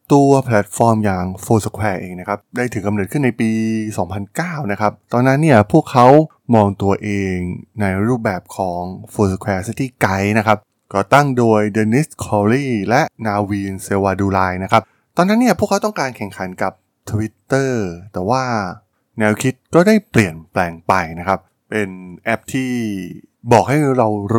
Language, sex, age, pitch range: Thai, male, 20-39, 95-130 Hz